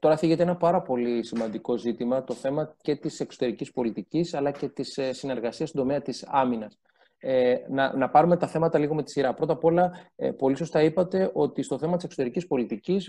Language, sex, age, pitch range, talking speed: Greek, male, 20-39, 125-175 Hz, 190 wpm